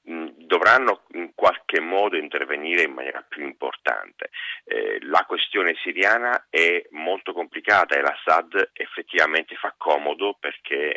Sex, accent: male, native